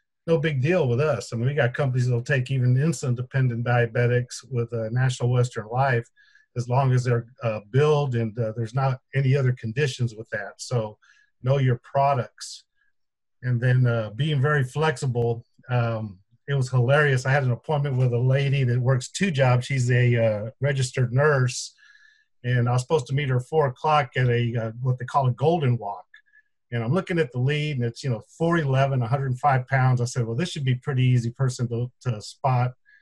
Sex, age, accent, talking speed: male, 50-69, American, 200 wpm